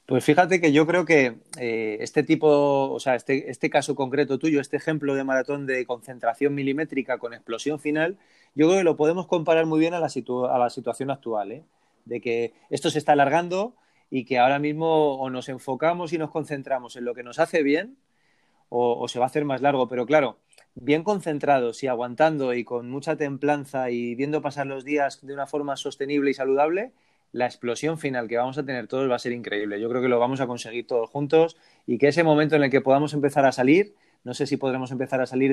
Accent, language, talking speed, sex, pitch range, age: Spanish, Spanish, 220 wpm, male, 125-150 Hz, 30-49